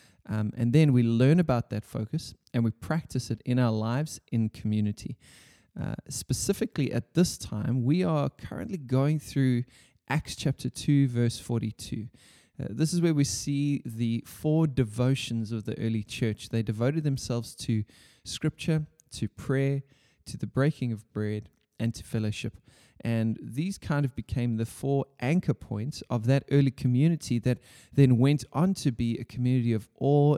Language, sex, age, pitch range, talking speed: English, male, 20-39, 115-140 Hz, 165 wpm